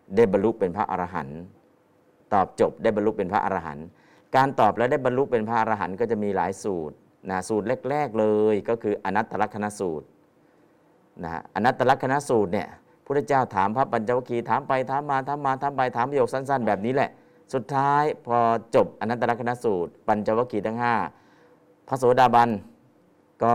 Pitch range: 100-125 Hz